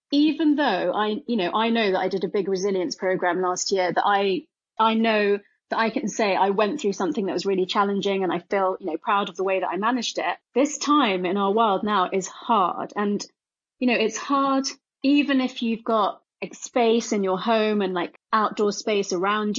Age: 30-49